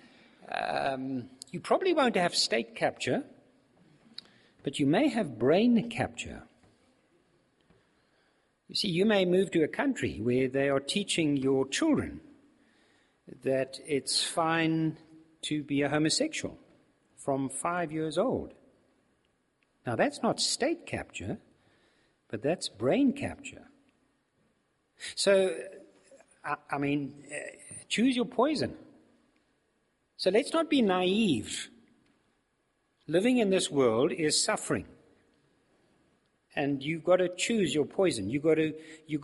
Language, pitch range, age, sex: English, 140-190 Hz, 60-79, male